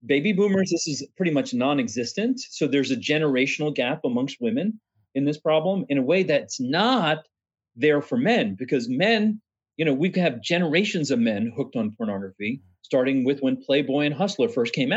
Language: English